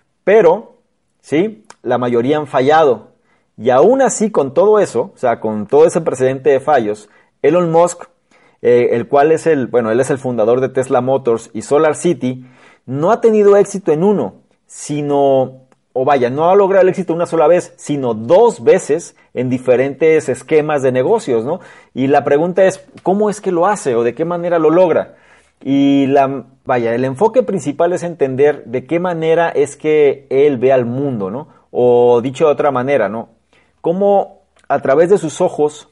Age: 40-59